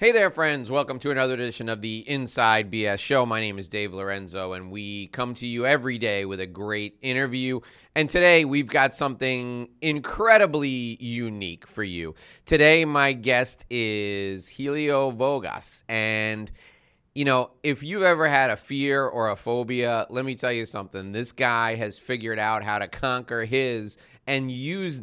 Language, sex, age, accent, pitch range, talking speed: English, male, 30-49, American, 105-135 Hz, 170 wpm